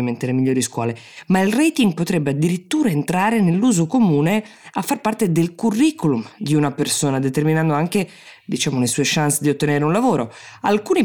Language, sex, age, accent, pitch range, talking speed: Italian, female, 20-39, native, 130-200 Hz, 165 wpm